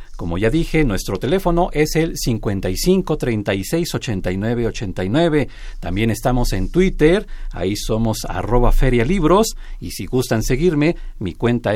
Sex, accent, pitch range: male, Mexican, 110-145 Hz